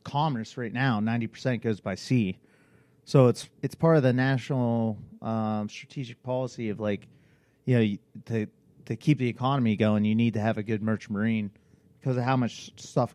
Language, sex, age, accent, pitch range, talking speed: English, male, 30-49, American, 110-125 Hz, 185 wpm